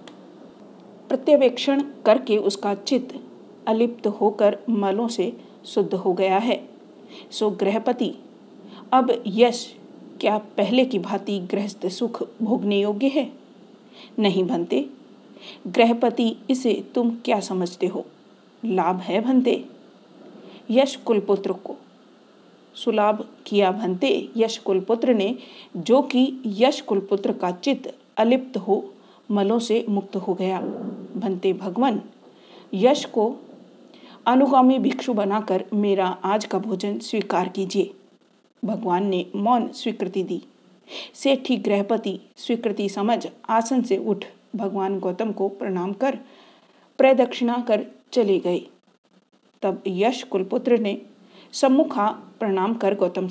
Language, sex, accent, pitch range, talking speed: Hindi, female, native, 195-245 Hz, 110 wpm